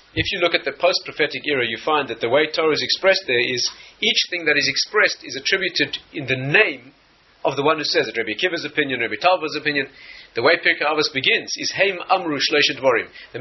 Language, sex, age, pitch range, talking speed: English, male, 40-59, 150-190 Hz, 215 wpm